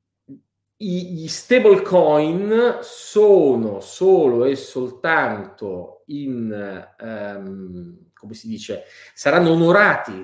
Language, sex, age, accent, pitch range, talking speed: Italian, male, 40-59, native, 110-170 Hz, 80 wpm